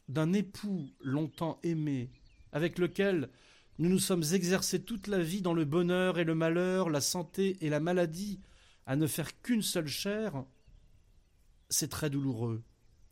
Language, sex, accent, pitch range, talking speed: French, male, French, 120-185 Hz, 150 wpm